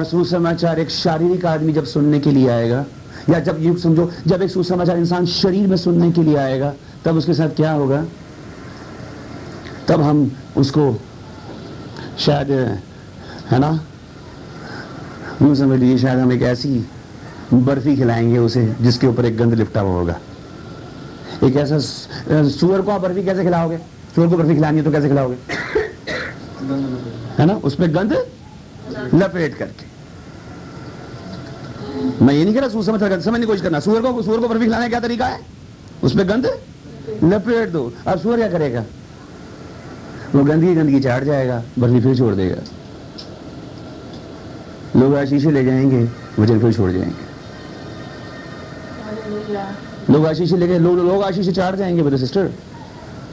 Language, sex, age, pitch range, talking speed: Hindi, male, 50-69, 130-180 Hz, 105 wpm